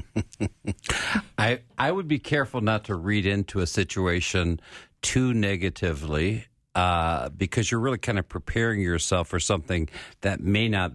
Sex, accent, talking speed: male, American, 140 wpm